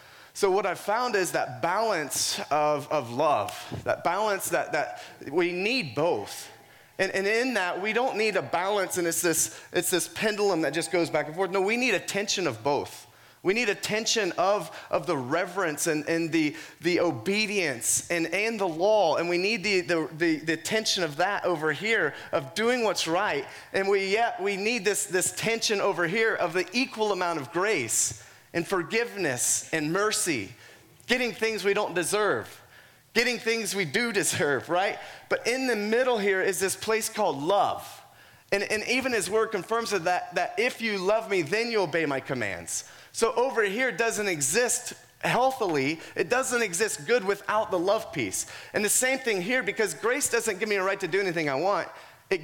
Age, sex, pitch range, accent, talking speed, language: 30-49, male, 175-225 Hz, American, 190 wpm, English